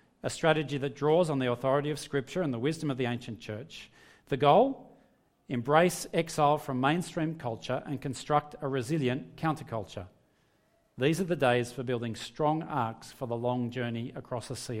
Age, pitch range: 40-59, 125-175 Hz